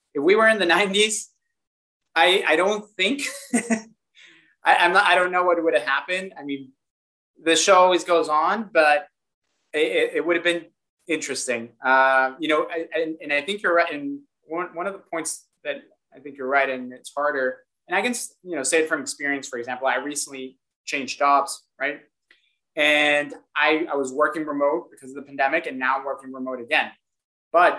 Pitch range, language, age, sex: 135-170 Hz, English, 20-39, male